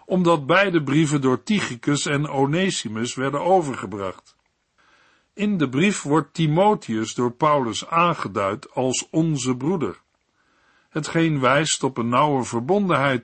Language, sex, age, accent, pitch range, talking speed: Dutch, male, 50-69, Dutch, 130-175 Hz, 120 wpm